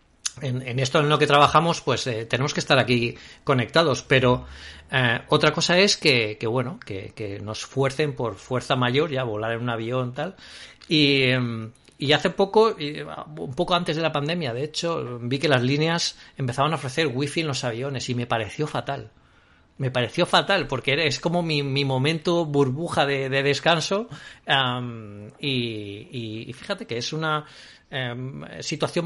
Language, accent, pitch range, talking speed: Spanish, Spanish, 120-150 Hz, 175 wpm